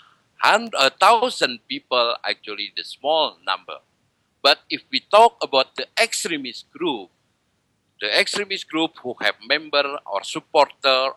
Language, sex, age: English, male, 50-69